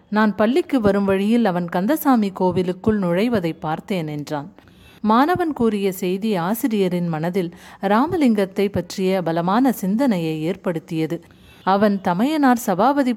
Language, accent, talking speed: Tamil, native, 105 wpm